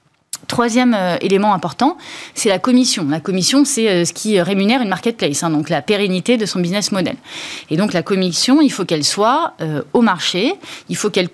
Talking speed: 205 wpm